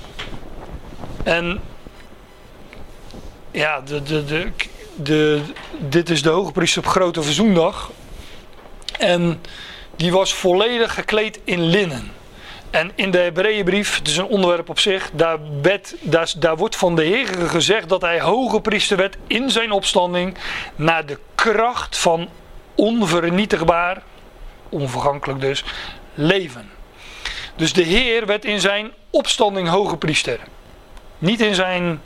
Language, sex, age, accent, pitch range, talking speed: Dutch, male, 40-59, Dutch, 155-195 Hz, 125 wpm